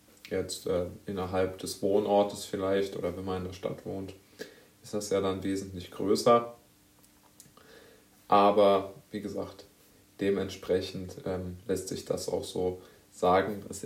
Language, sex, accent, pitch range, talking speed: German, male, German, 100-110 Hz, 135 wpm